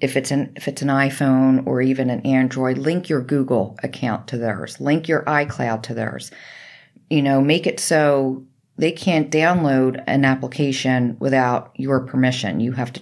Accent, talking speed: American, 175 wpm